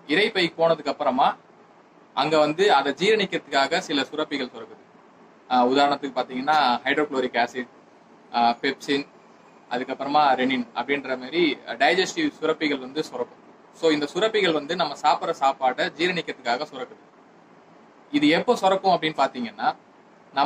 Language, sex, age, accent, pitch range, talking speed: Tamil, male, 20-39, native, 135-170 Hz, 110 wpm